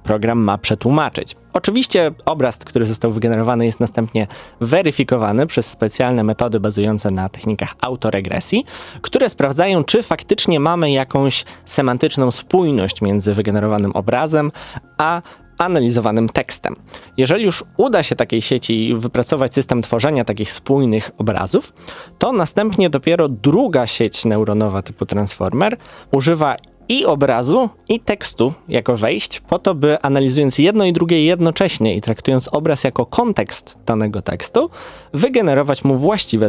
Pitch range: 110-145 Hz